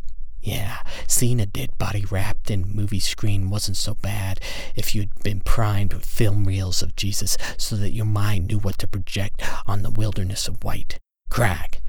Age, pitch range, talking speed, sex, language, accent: 50-69, 85-105 Hz, 175 wpm, male, English, American